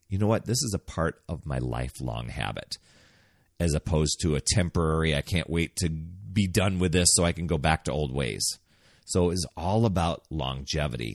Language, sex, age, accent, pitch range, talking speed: English, male, 30-49, American, 80-115 Hz, 205 wpm